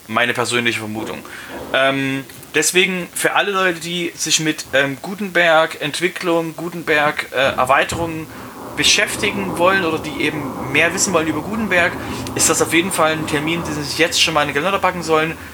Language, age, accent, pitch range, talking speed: German, 30-49, German, 130-170 Hz, 165 wpm